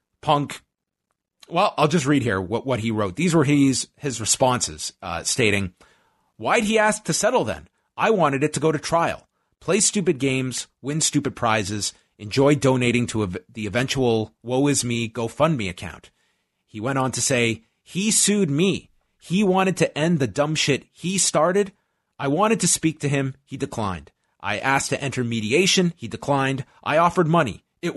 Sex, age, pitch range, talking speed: male, 30-49, 105-150 Hz, 180 wpm